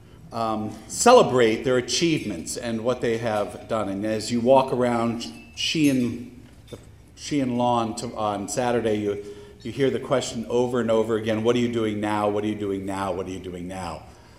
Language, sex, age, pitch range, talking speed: English, male, 50-69, 105-125 Hz, 170 wpm